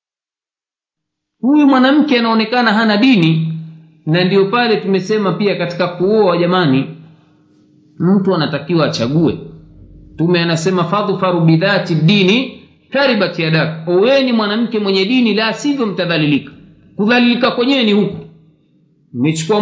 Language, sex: Swahili, male